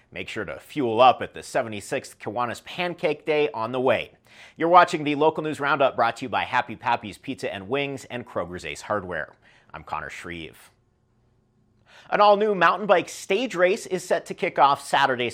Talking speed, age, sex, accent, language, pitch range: 185 wpm, 40-59, male, American, English, 120-165 Hz